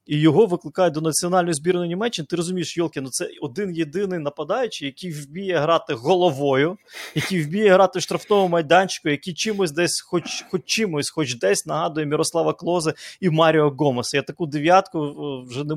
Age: 20-39